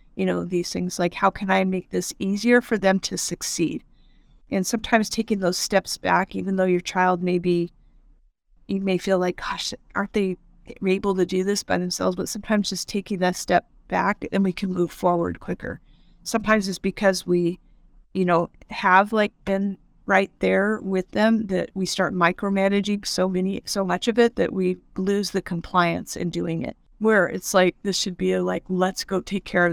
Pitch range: 175-195 Hz